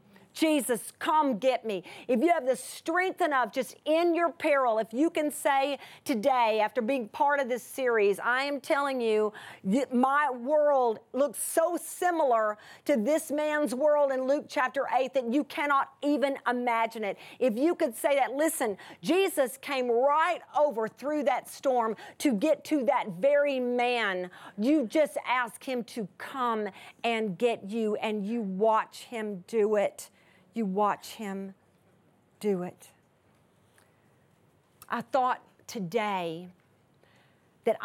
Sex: female